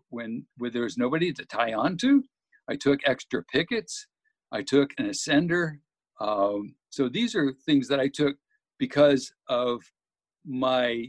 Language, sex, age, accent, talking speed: English, male, 60-79, American, 145 wpm